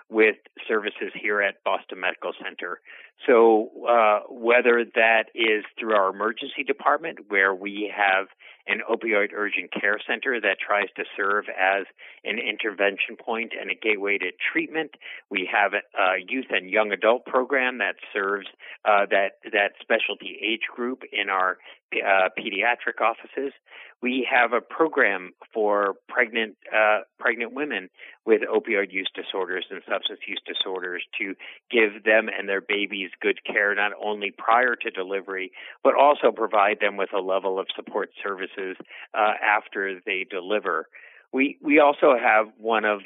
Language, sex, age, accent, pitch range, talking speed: English, male, 50-69, American, 100-140 Hz, 150 wpm